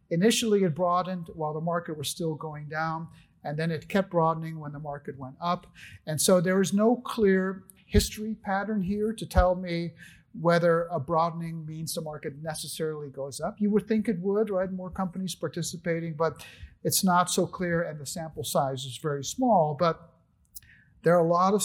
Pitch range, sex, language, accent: 155-185 Hz, male, English, American